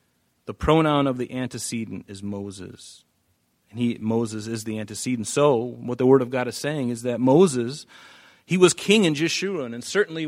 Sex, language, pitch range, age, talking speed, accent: male, English, 105-135 Hz, 40-59, 180 wpm, American